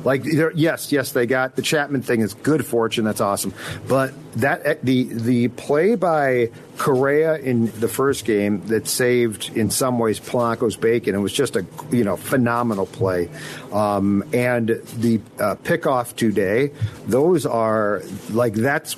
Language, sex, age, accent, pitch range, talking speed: English, male, 50-69, American, 115-150 Hz, 155 wpm